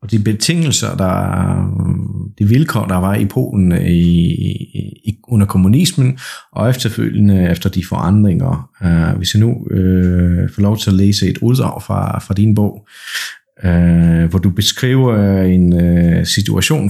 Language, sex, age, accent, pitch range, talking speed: Danish, male, 30-49, native, 95-120 Hz, 145 wpm